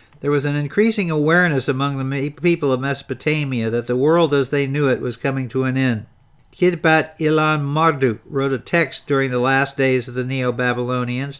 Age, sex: 50-69, male